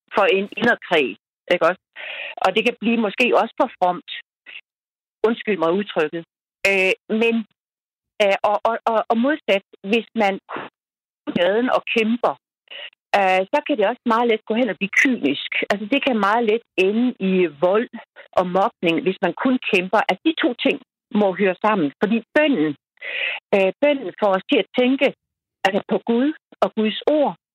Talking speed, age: 170 wpm, 60-79